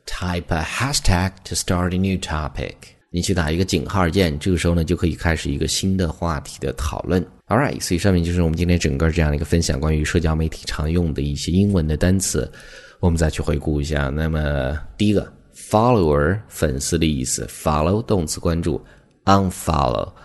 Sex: male